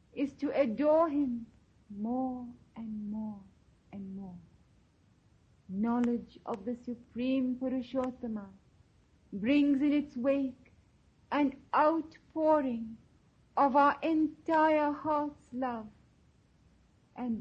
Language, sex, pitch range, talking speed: English, female, 215-270 Hz, 90 wpm